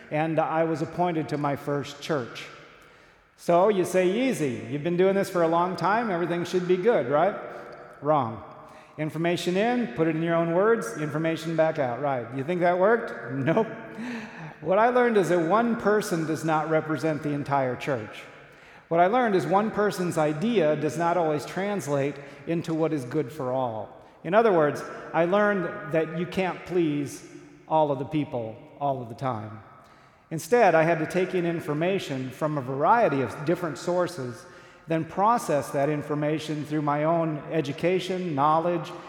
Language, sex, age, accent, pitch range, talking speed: English, male, 40-59, American, 145-180 Hz, 170 wpm